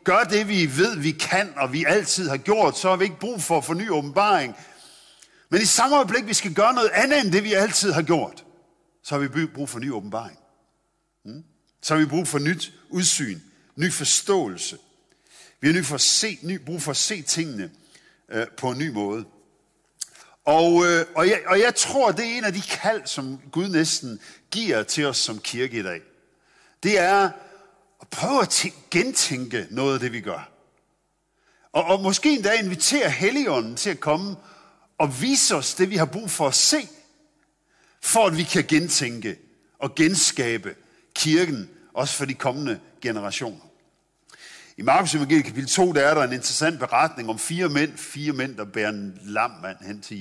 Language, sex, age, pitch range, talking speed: Danish, male, 50-69, 135-195 Hz, 175 wpm